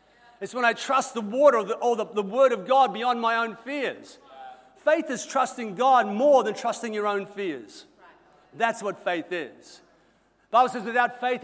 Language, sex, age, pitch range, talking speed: English, male, 50-69, 220-275 Hz, 195 wpm